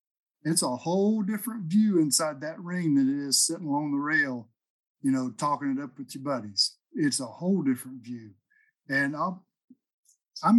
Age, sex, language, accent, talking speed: 50-69, male, English, American, 175 wpm